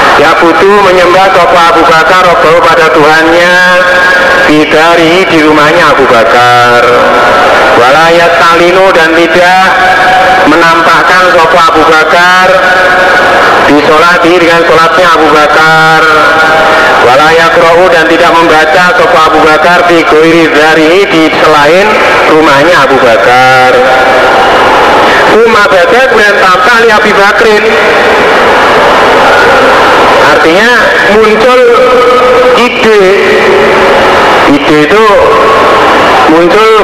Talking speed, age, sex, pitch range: 90 wpm, 30-49, male, 160-200 Hz